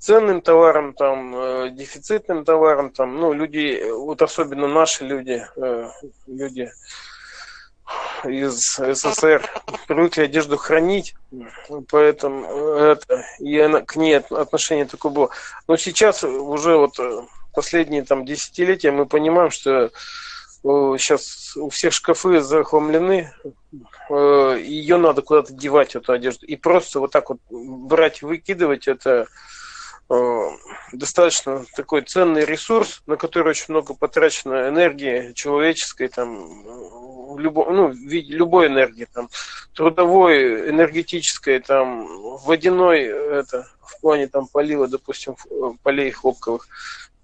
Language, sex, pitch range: Russian, male, 140-185 Hz